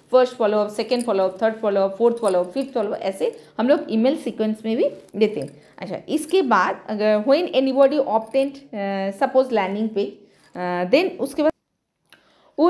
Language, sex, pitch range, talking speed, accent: Hindi, female, 195-275 Hz, 165 wpm, native